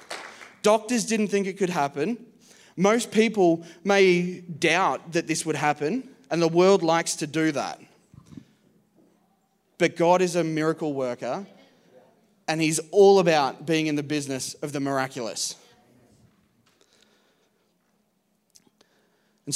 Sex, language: male, English